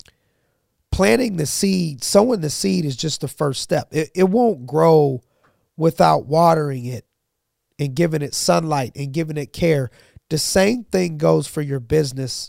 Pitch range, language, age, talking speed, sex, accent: 140-170 Hz, English, 40-59, 160 wpm, male, American